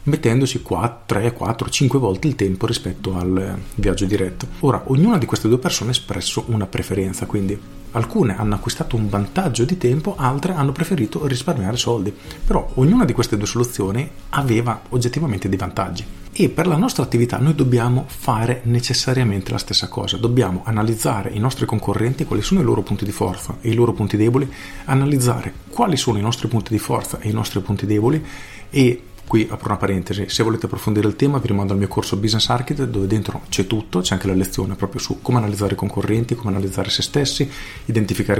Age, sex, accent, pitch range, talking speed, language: 40-59, male, native, 100-125 Hz, 190 wpm, Italian